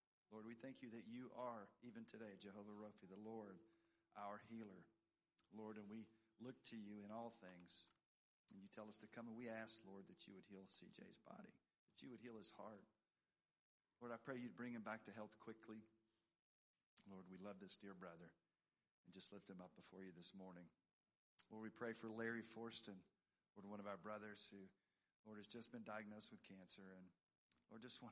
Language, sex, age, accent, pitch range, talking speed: English, male, 40-59, American, 100-115 Hz, 200 wpm